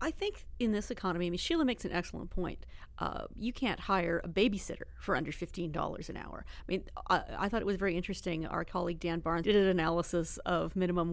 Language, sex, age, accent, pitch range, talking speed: English, female, 40-59, American, 165-200 Hz, 220 wpm